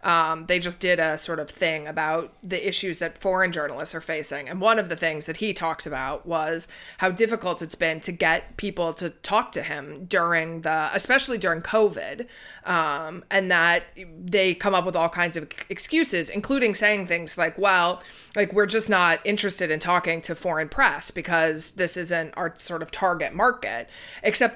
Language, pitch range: English, 170-210 Hz